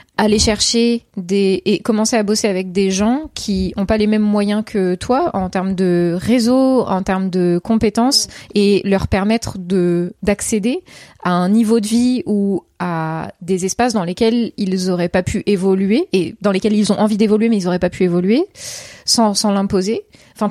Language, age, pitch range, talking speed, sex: French, 20-39, 190-230 Hz, 185 wpm, female